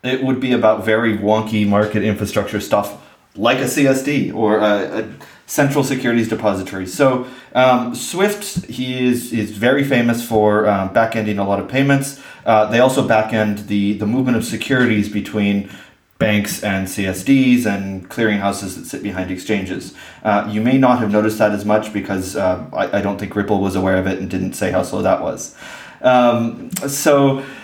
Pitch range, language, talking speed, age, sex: 105-125 Hz, English, 175 wpm, 30-49, male